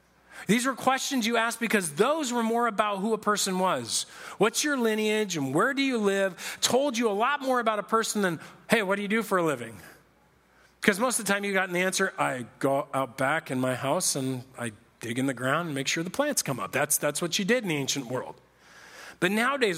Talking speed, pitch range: 240 wpm, 155-205 Hz